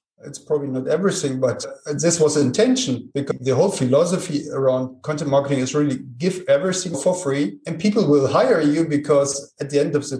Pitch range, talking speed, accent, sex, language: 130-175 Hz, 190 wpm, German, male, English